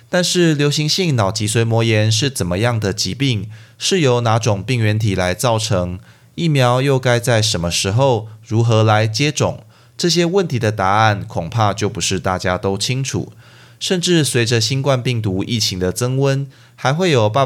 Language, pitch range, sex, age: Chinese, 100-130 Hz, male, 20-39